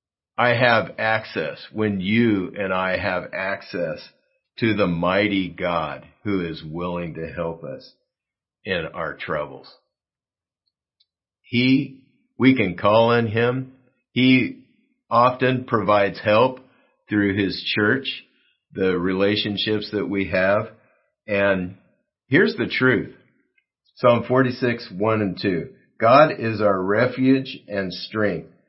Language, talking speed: English, 115 wpm